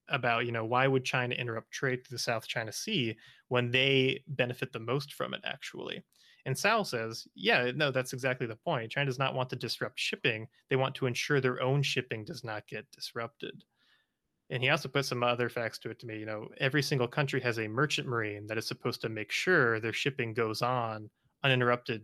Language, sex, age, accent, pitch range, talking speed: English, male, 20-39, American, 115-140 Hz, 215 wpm